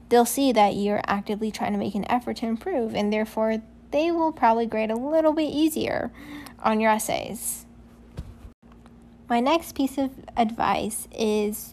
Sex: female